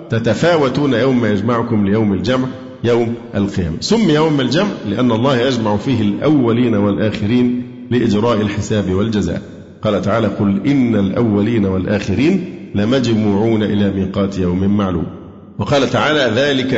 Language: Arabic